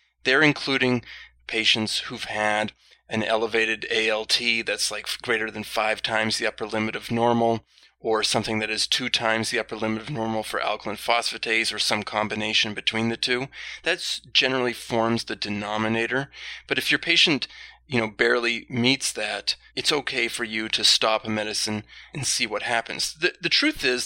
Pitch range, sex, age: 110-125 Hz, male, 30-49